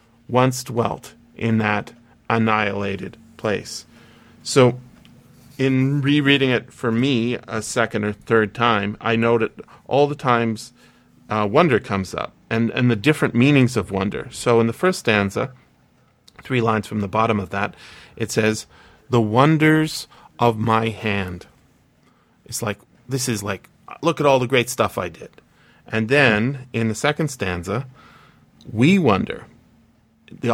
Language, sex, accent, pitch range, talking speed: English, male, American, 110-125 Hz, 145 wpm